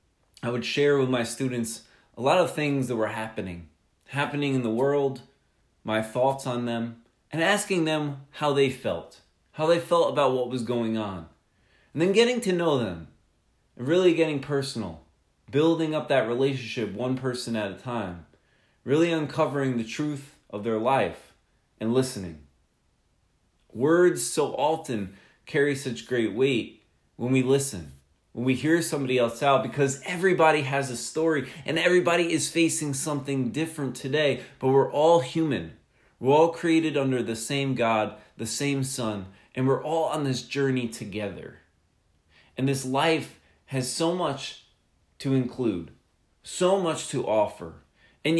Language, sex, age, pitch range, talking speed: English, male, 20-39, 115-150 Hz, 155 wpm